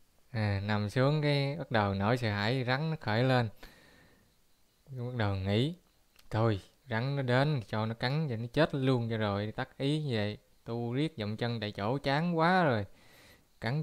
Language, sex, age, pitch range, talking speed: Vietnamese, male, 20-39, 105-130 Hz, 180 wpm